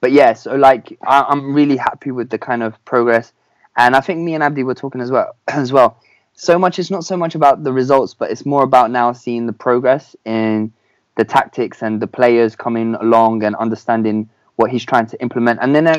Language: English